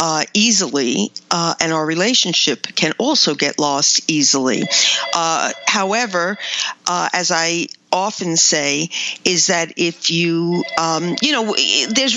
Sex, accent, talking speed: female, American, 130 wpm